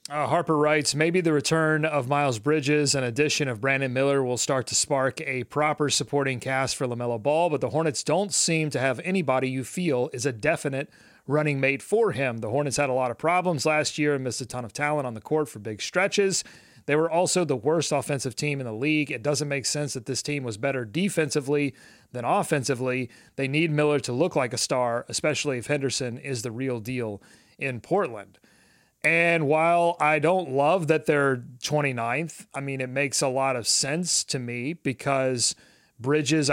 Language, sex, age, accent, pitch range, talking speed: English, male, 30-49, American, 130-150 Hz, 200 wpm